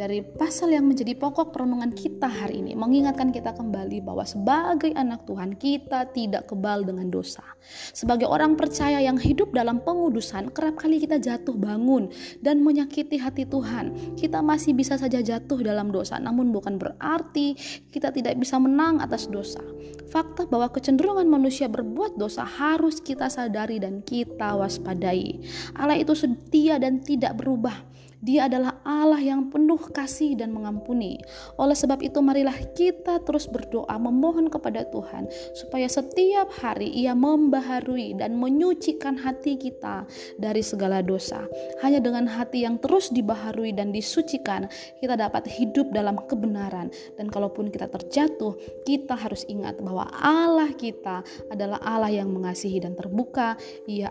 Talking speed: 145 wpm